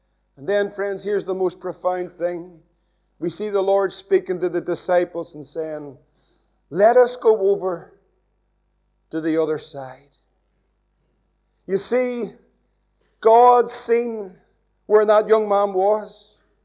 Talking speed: 125 wpm